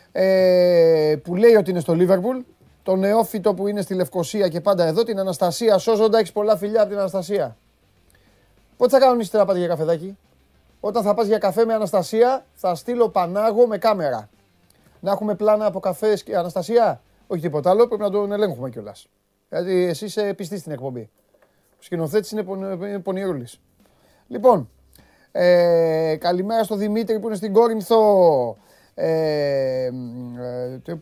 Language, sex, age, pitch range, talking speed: Greek, male, 30-49, 150-205 Hz, 165 wpm